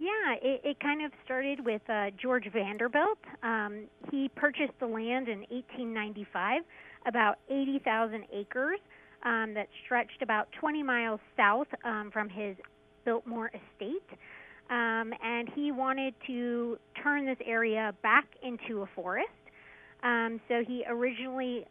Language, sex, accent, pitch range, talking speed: English, female, American, 215-260 Hz, 135 wpm